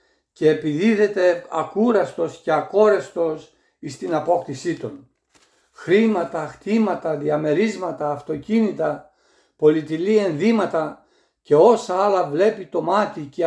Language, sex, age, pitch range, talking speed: Greek, male, 60-79, 155-200 Hz, 100 wpm